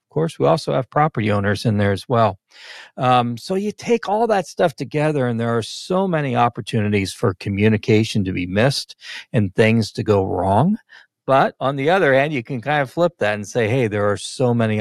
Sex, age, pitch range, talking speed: male, 40-59, 105-135 Hz, 215 wpm